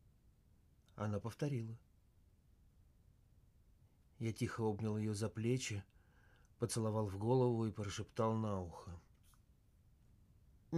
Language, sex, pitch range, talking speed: Russian, male, 100-135 Hz, 90 wpm